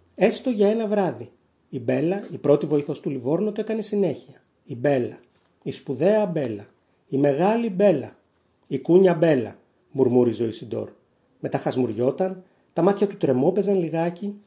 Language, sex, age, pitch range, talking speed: Greek, male, 30-49, 125-185 Hz, 140 wpm